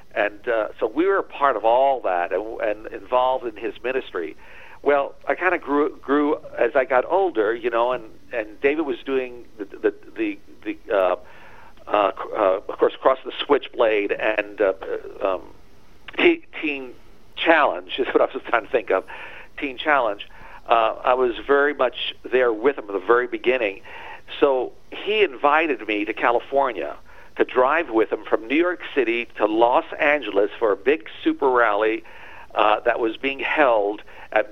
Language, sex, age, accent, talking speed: English, male, 50-69, American, 175 wpm